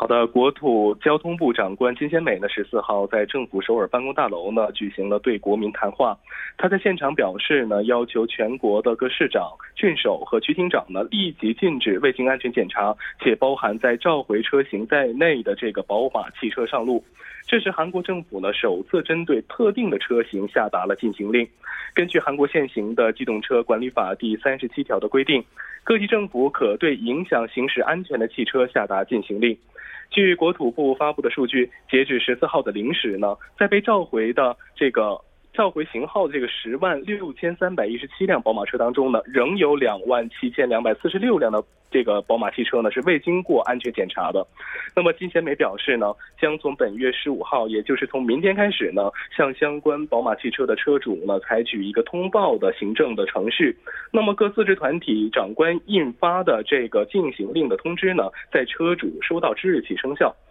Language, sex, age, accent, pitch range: Korean, male, 20-39, Chinese, 115-185 Hz